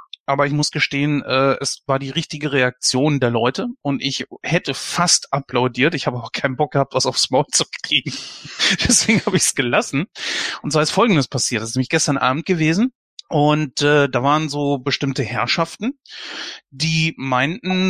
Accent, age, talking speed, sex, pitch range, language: German, 30-49, 170 wpm, male, 135-160 Hz, German